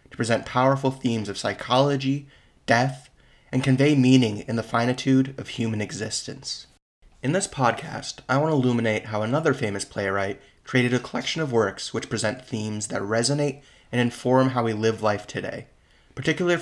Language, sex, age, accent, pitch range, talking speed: English, male, 20-39, American, 110-135 Hz, 165 wpm